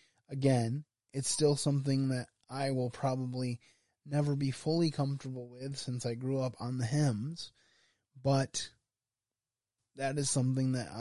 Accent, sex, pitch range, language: American, male, 115-135 Hz, English